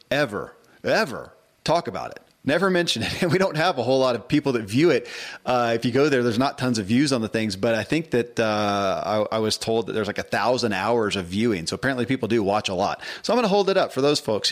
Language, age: English, 40-59